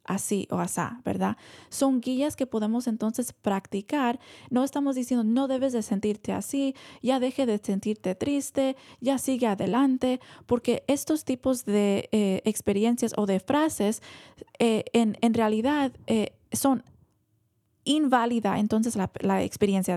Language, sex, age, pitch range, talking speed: Spanish, female, 20-39, 210-260 Hz, 140 wpm